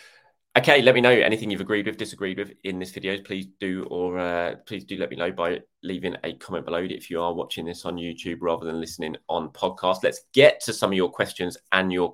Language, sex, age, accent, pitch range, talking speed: English, male, 20-39, British, 90-125 Hz, 235 wpm